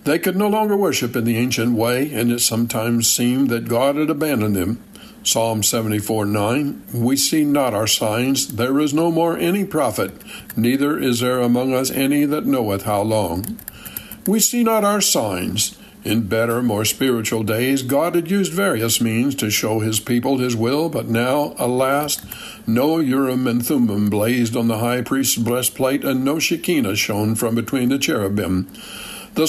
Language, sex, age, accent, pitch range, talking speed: English, male, 60-79, American, 110-145 Hz, 175 wpm